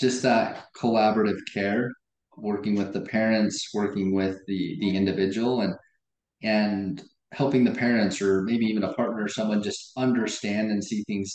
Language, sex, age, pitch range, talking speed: English, male, 20-39, 100-125 Hz, 160 wpm